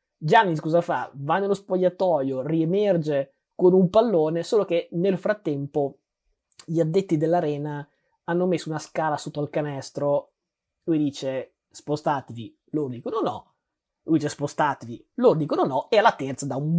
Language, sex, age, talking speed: Italian, male, 20-39, 145 wpm